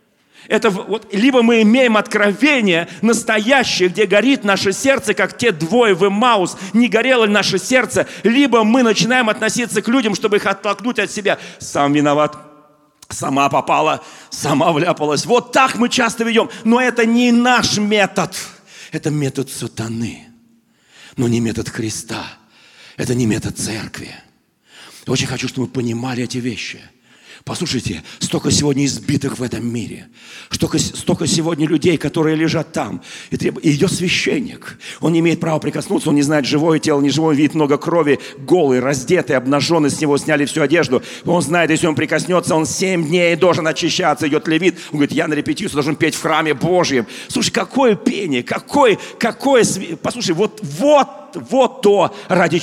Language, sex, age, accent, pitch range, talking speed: Russian, male, 40-59, native, 150-220 Hz, 160 wpm